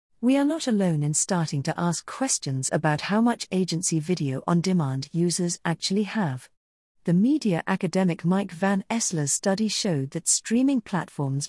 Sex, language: female, English